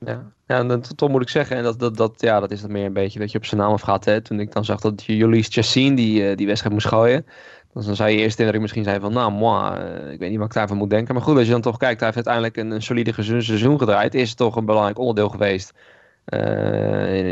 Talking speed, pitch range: 295 wpm, 110-125 Hz